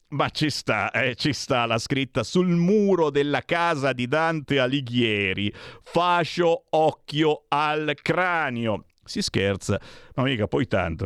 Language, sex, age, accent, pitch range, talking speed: Italian, male, 50-69, native, 100-135 Hz, 130 wpm